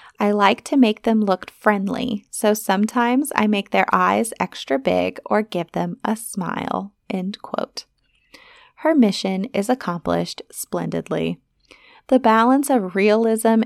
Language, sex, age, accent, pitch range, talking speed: English, female, 20-39, American, 190-245 Hz, 135 wpm